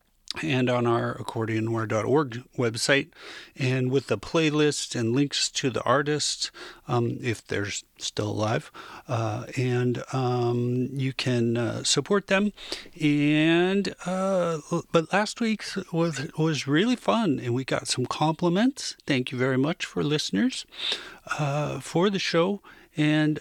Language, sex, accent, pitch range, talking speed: English, male, American, 125-170 Hz, 135 wpm